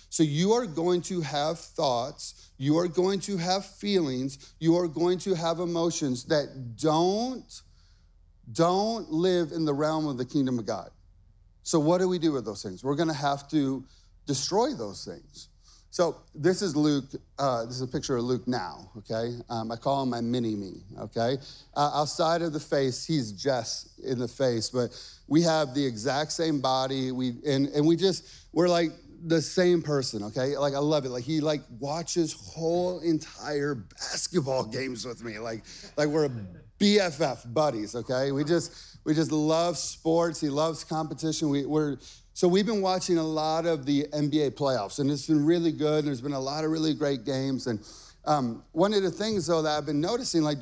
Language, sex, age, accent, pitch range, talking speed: English, male, 30-49, American, 130-165 Hz, 190 wpm